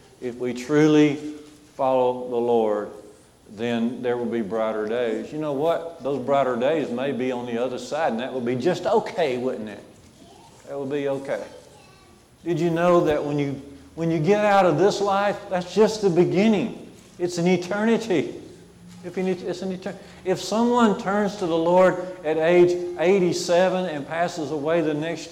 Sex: male